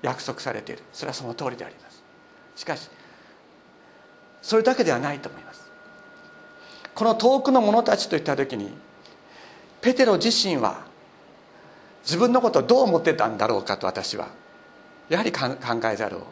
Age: 50-69